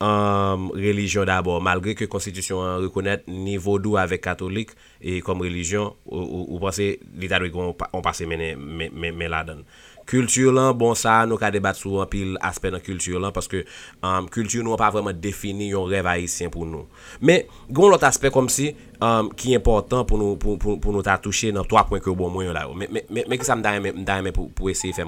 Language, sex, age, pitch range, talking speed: English, male, 20-39, 95-115 Hz, 205 wpm